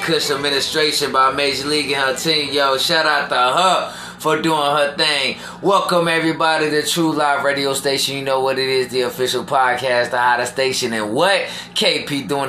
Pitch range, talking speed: 115-145 Hz, 185 wpm